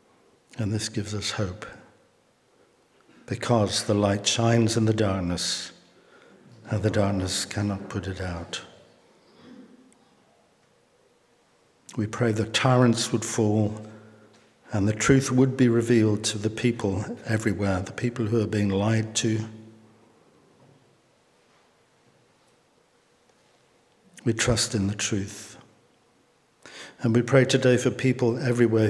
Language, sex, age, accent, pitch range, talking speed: English, male, 60-79, British, 105-115 Hz, 110 wpm